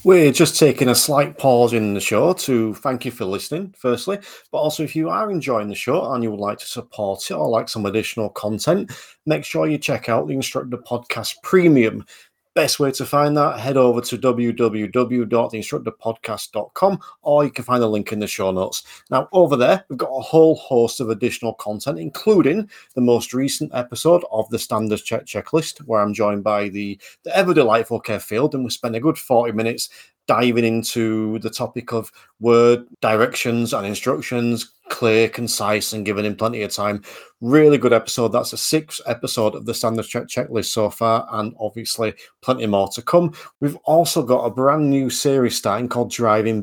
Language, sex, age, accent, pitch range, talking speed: English, male, 40-59, British, 110-135 Hz, 190 wpm